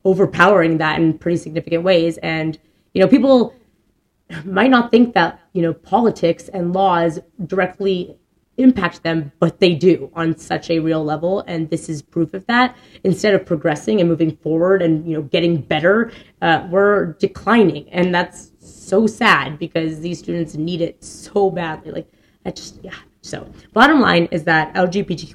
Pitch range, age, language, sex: 165-195 Hz, 20-39, English, female